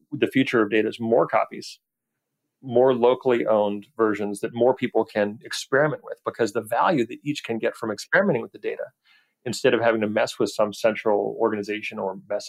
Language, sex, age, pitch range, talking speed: English, male, 40-59, 105-125 Hz, 190 wpm